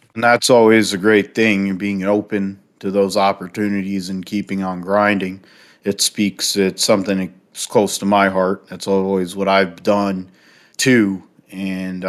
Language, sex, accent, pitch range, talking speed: English, male, American, 95-105 Hz, 150 wpm